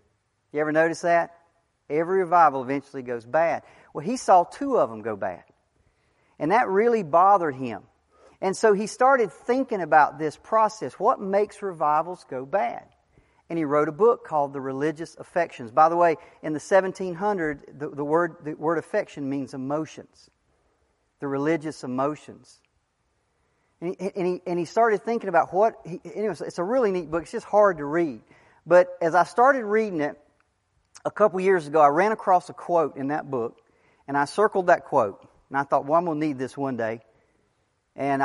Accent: American